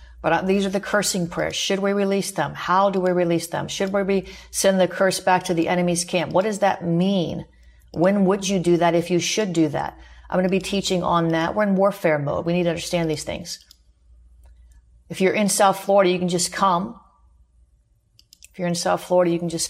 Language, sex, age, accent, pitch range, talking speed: English, female, 40-59, American, 155-185 Hz, 225 wpm